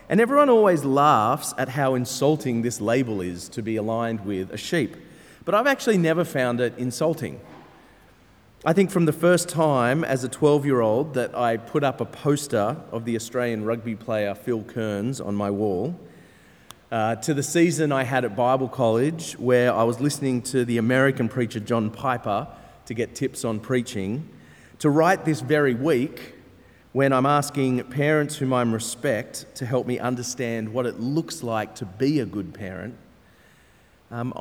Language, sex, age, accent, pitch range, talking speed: English, male, 30-49, Australian, 115-155 Hz, 170 wpm